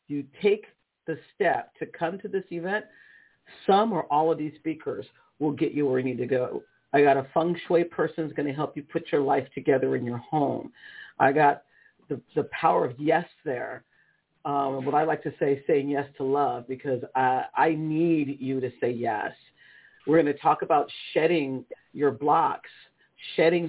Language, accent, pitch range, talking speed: English, American, 140-170 Hz, 195 wpm